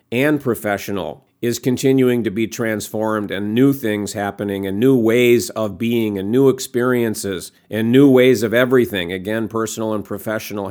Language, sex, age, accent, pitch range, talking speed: English, male, 50-69, American, 110-130 Hz, 155 wpm